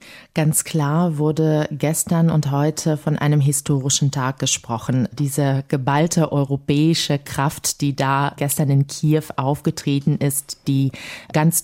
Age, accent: 30-49, German